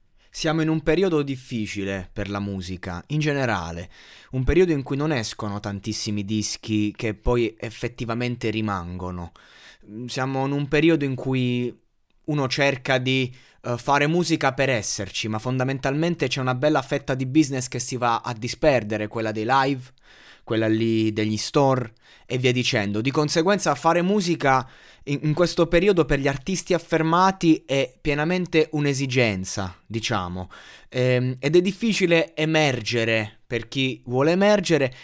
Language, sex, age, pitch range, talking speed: Italian, male, 20-39, 115-155 Hz, 145 wpm